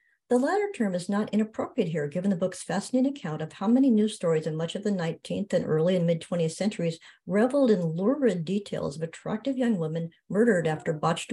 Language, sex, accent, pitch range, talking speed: English, male, American, 165-215 Hz, 200 wpm